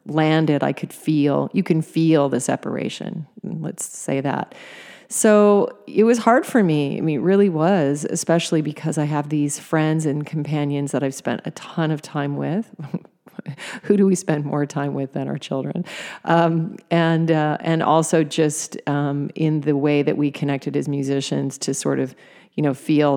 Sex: female